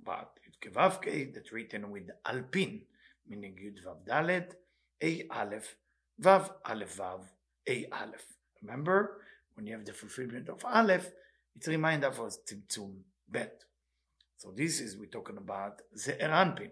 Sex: male